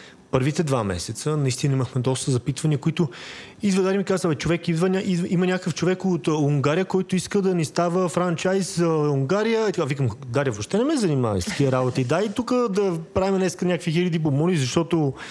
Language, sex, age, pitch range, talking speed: Bulgarian, male, 30-49, 125-170 Hz, 190 wpm